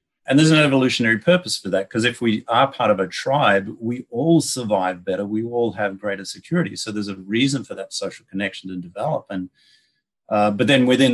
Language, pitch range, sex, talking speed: English, 100-125 Hz, male, 210 wpm